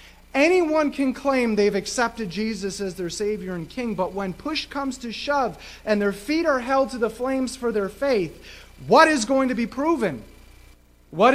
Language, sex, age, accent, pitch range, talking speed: English, male, 30-49, American, 155-240 Hz, 185 wpm